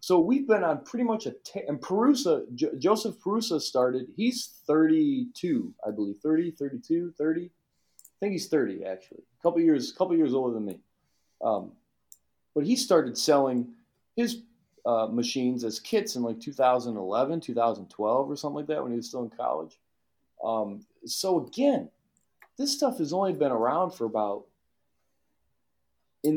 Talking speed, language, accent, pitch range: 155 wpm, English, American, 115-185 Hz